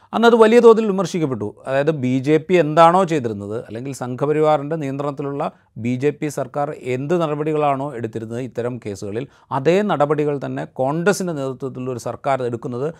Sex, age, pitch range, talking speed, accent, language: male, 30-49, 120-160 Hz, 145 wpm, native, Malayalam